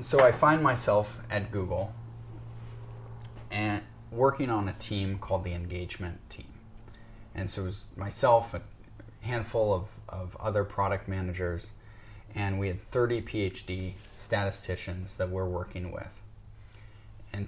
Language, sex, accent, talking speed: English, male, American, 135 wpm